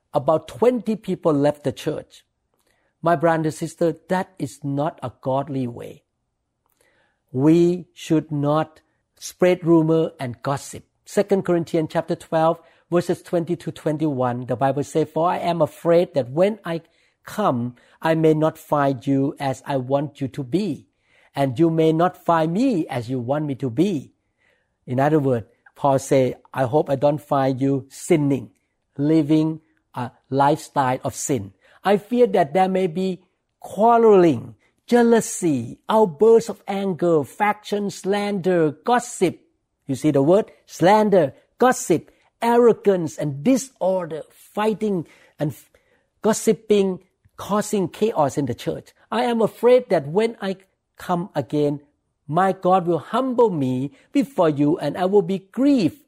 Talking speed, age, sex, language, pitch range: 140 wpm, 60-79, male, English, 145-195 Hz